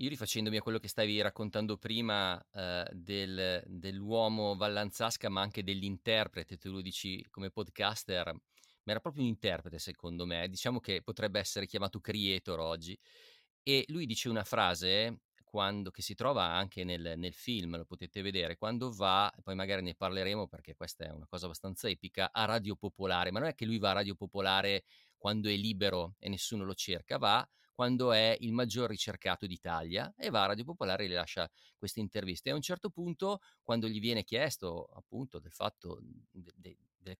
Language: Italian